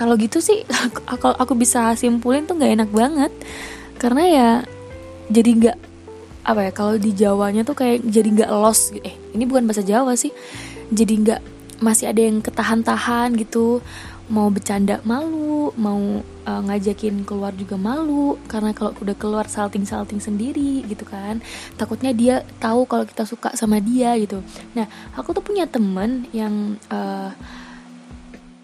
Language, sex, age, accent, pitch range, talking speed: Indonesian, female, 20-39, native, 205-245 Hz, 150 wpm